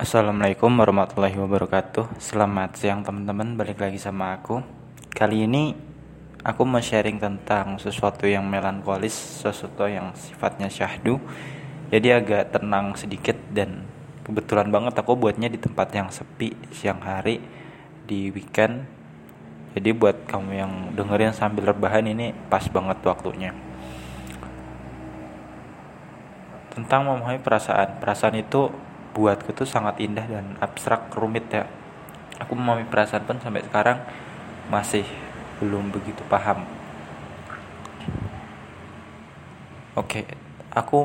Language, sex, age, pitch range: Indonesian, male, 20-39, 100-115 Hz